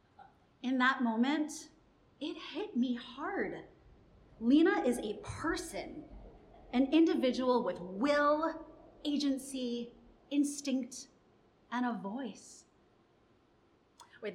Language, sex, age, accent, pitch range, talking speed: English, female, 30-49, American, 210-295 Hz, 90 wpm